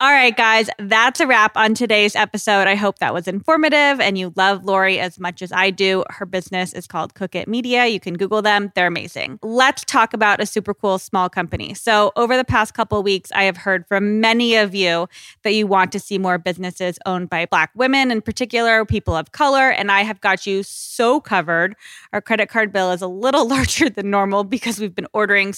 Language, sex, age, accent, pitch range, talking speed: English, female, 20-39, American, 190-225 Hz, 225 wpm